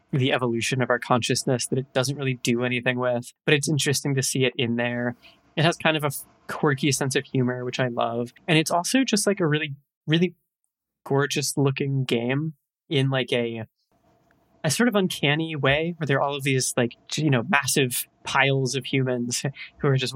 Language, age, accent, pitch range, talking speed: English, 20-39, American, 125-150 Hz, 200 wpm